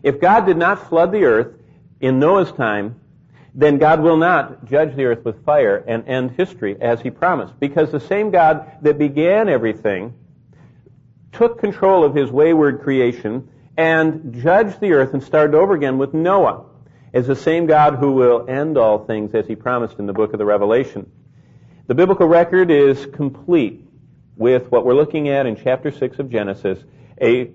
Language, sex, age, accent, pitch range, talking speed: English, male, 50-69, American, 120-160 Hz, 180 wpm